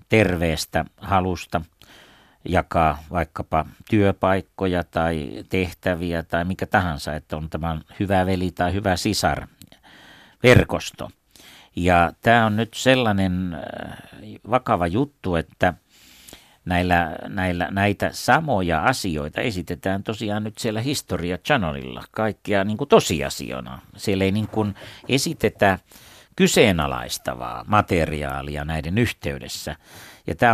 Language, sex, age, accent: Finnish, male, 60-79, native